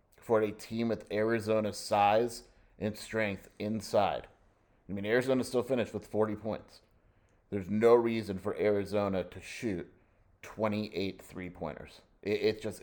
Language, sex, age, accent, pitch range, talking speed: English, male, 30-49, American, 95-110 Hz, 130 wpm